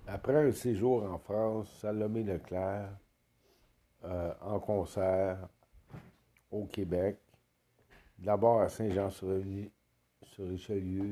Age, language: 60-79, French